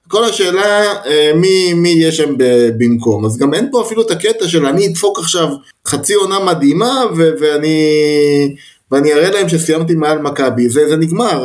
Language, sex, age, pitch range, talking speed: Hebrew, male, 30-49, 120-160 Hz, 160 wpm